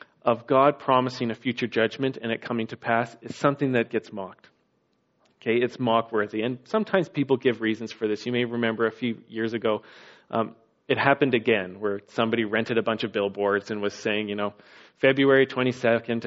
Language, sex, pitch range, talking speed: English, male, 110-125 Hz, 190 wpm